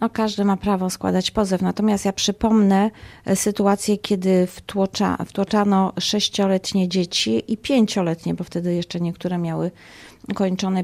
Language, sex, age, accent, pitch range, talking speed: Polish, female, 40-59, native, 185-210 Hz, 115 wpm